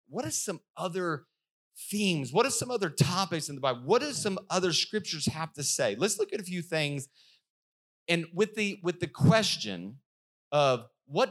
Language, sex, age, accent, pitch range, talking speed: English, male, 30-49, American, 115-165 Hz, 185 wpm